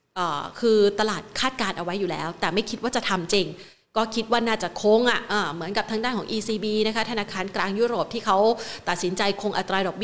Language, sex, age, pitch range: Thai, female, 30-49, 190-235 Hz